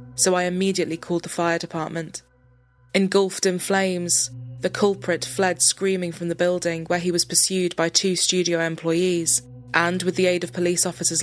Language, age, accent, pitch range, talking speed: English, 20-39, British, 165-185 Hz, 170 wpm